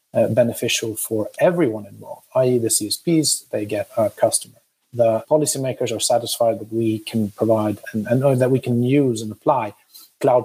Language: English